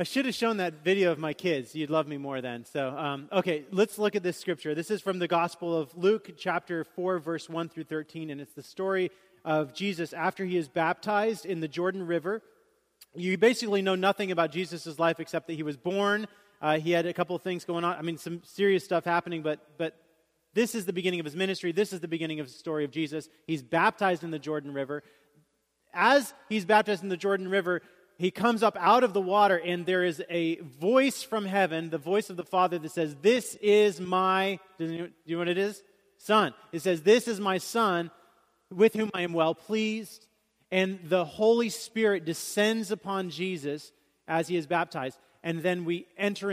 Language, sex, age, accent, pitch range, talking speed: English, male, 30-49, American, 160-195 Hz, 215 wpm